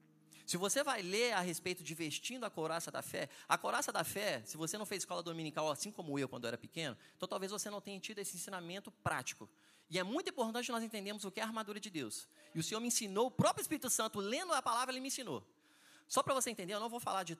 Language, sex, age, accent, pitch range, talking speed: Portuguese, male, 20-39, Brazilian, 170-240 Hz, 260 wpm